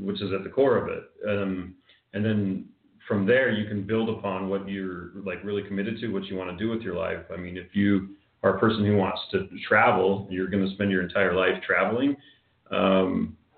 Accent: American